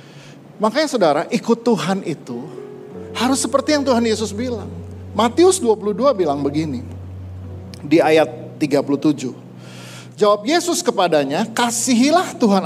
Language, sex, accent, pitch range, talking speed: Indonesian, male, native, 140-220 Hz, 110 wpm